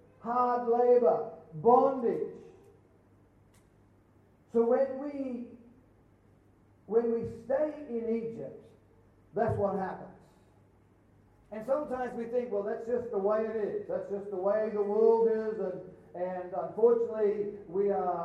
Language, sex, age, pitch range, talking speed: English, male, 50-69, 205-255 Hz, 120 wpm